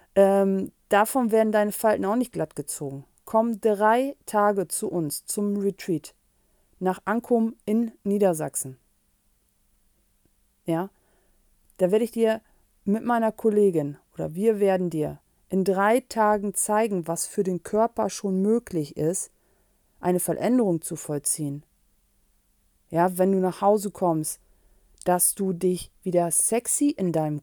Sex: female